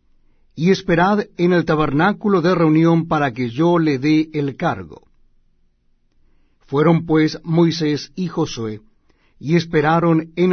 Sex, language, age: male, Spanish, 60-79